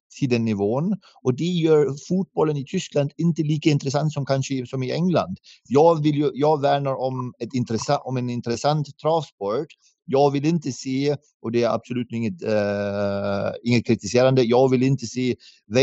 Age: 30-49